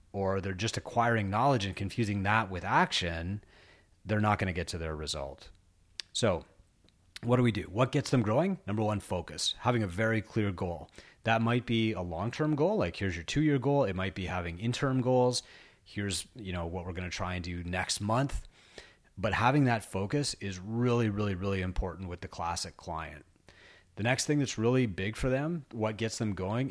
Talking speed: 200 wpm